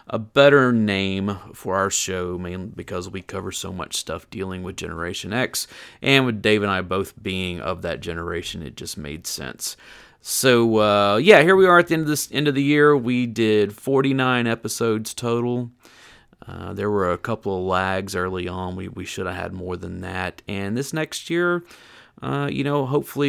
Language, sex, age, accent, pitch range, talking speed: English, male, 30-49, American, 95-130 Hz, 195 wpm